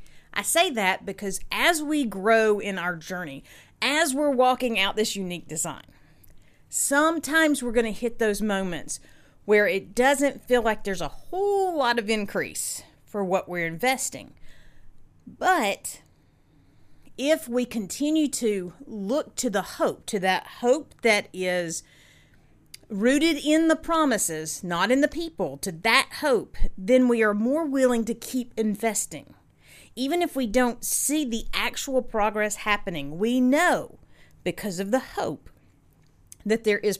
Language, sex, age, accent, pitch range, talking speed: English, female, 50-69, American, 195-270 Hz, 145 wpm